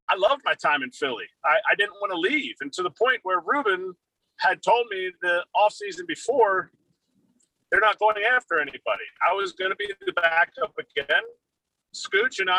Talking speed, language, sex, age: 185 wpm, English, male, 40-59